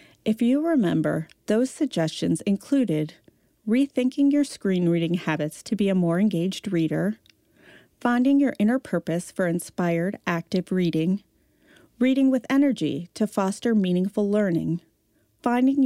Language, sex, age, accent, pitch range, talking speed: English, female, 40-59, American, 170-225 Hz, 125 wpm